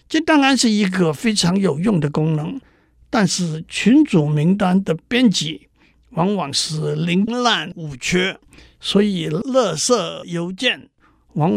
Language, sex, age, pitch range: Chinese, male, 60-79, 160-225 Hz